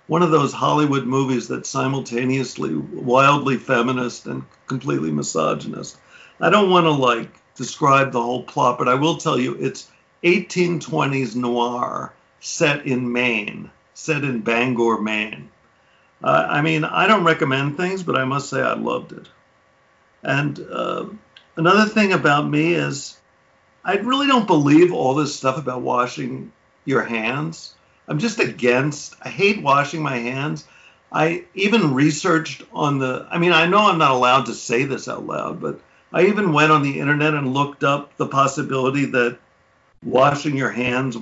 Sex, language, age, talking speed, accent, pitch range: male, English, 50-69, 160 wpm, American, 120-155 Hz